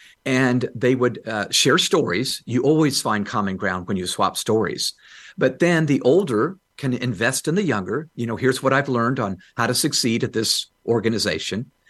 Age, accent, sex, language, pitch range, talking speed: 50-69, American, male, English, 115-160 Hz, 185 wpm